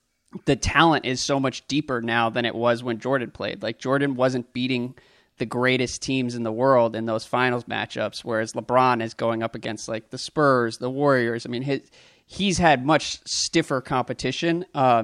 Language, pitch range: English, 125-145 Hz